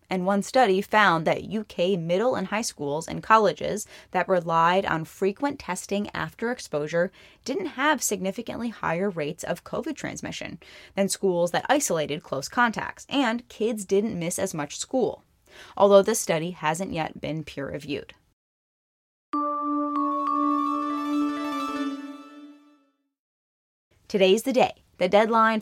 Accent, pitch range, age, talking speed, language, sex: American, 175-240 Hz, 10-29, 120 wpm, English, female